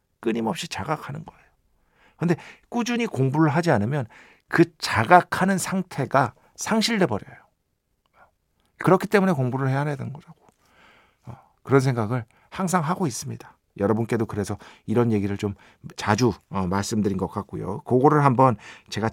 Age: 50-69